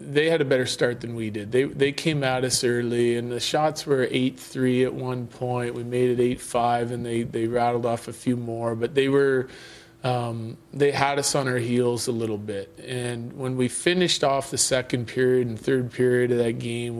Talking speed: 215 wpm